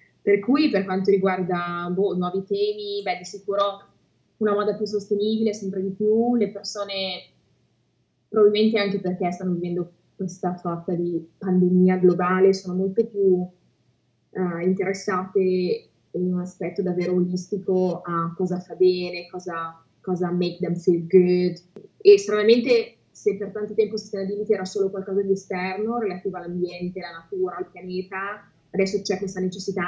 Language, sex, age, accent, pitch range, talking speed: Italian, female, 20-39, native, 175-200 Hz, 150 wpm